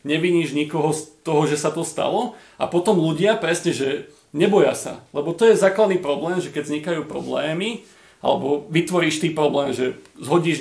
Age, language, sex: 40-59, Slovak, male